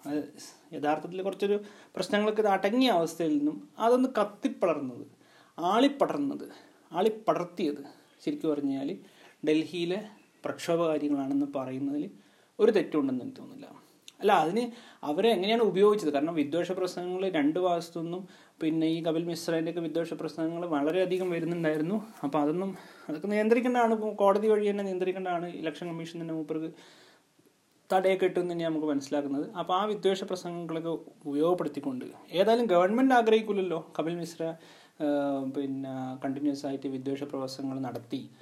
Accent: native